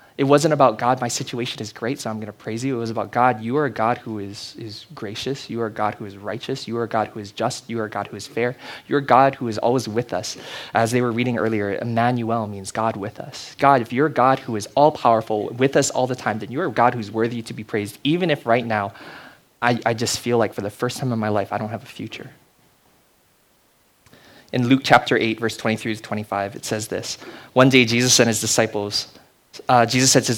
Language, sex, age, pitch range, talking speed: English, male, 20-39, 110-130 Hz, 255 wpm